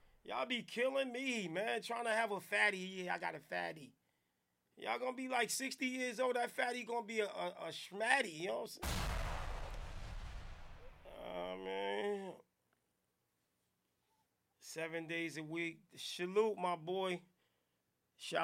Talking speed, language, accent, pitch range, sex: 155 wpm, English, American, 155-185 Hz, male